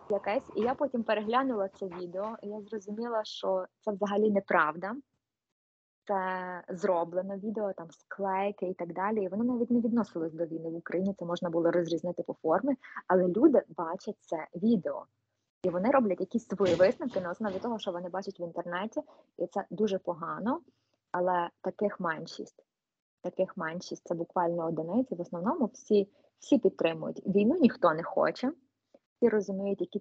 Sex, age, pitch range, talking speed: female, 20-39, 180-220 Hz, 160 wpm